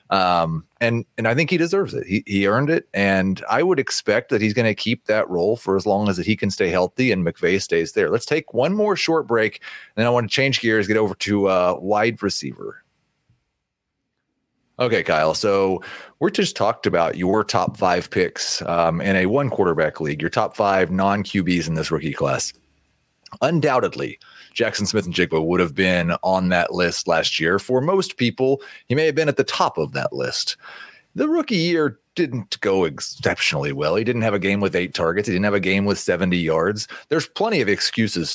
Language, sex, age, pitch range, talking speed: English, male, 30-49, 95-125 Hz, 205 wpm